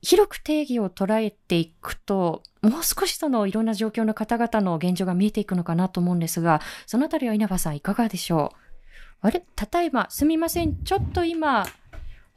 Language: Japanese